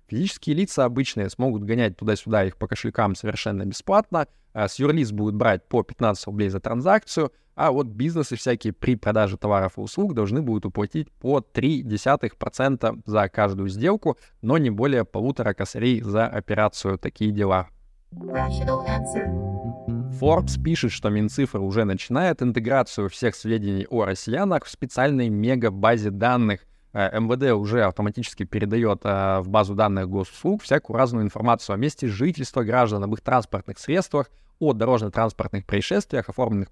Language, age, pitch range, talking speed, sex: Russian, 20-39, 105-135 Hz, 140 wpm, male